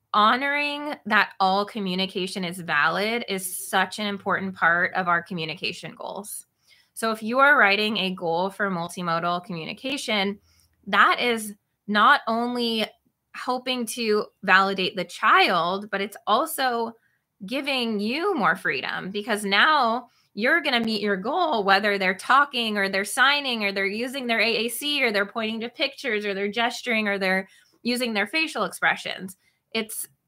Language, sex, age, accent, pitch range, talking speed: English, female, 20-39, American, 185-230 Hz, 150 wpm